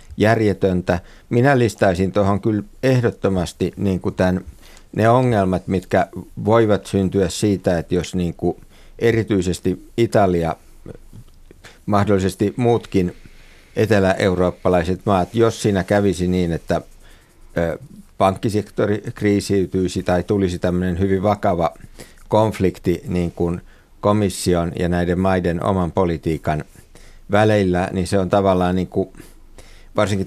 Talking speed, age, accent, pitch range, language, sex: 90 wpm, 50-69, native, 85-100 Hz, Finnish, male